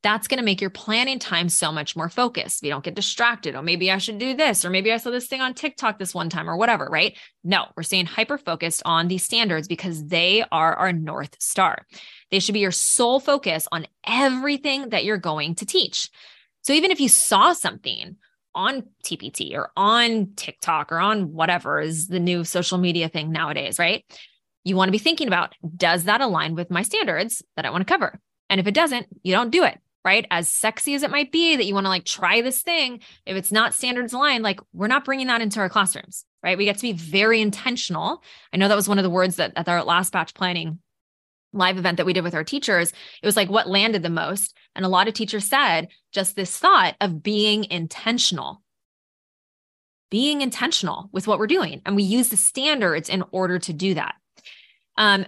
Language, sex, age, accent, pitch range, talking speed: English, female, 20-39, American, 175-235 Hz, 220 wpm